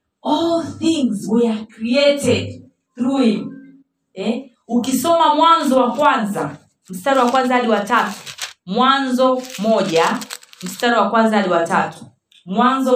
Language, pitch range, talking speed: Swahili, 215-295 Hz, 115 wpm